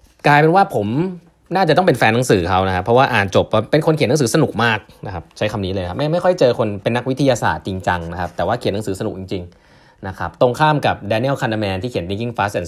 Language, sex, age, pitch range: Thai, male, 20-39, 95-130 Hz